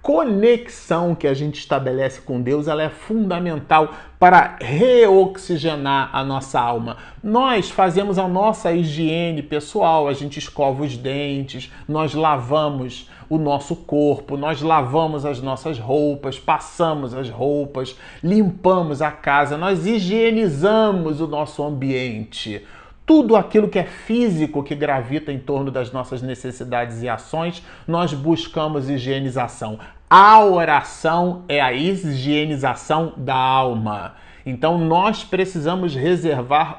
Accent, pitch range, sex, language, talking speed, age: Brazilian, 140-190 Hz, male, Portuguese, 120 wpm, 40-59